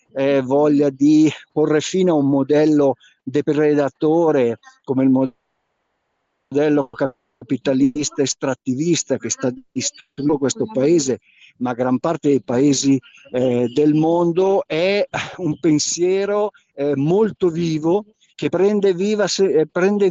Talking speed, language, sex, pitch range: 105 wpm, Italian, male, 140-180 Hz